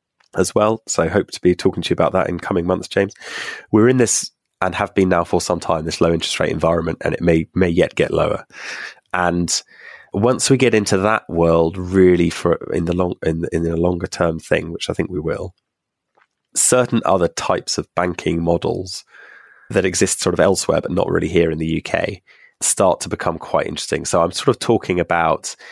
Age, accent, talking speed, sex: 20-39, British, 210 wpm, male